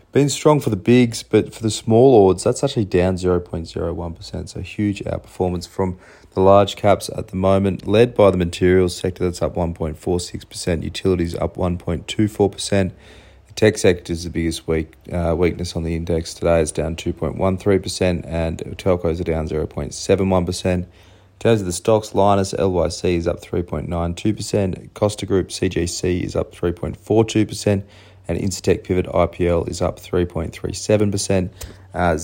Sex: male